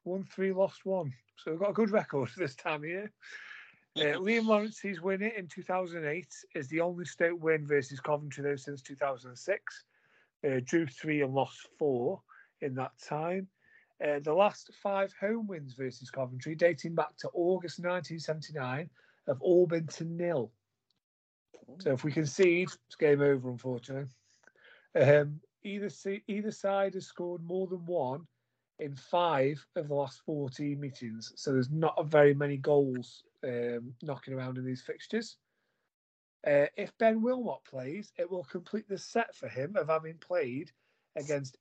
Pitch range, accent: 140-185 Hz, British